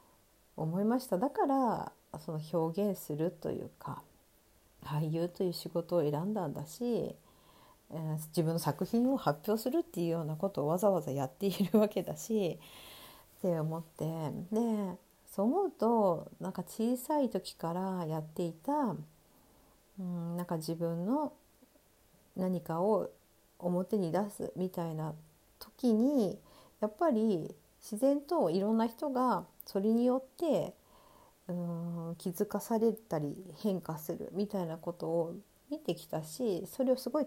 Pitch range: 165-225 Hz